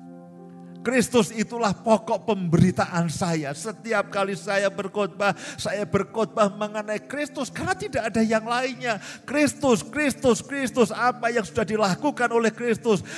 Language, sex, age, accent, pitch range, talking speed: Indonesian, male, 50-69, native, 145-225 Hz, 125 wpm